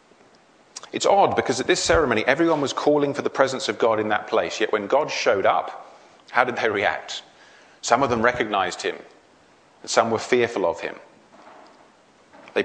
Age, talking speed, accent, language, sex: 40-59, 180 wpm, British, English, male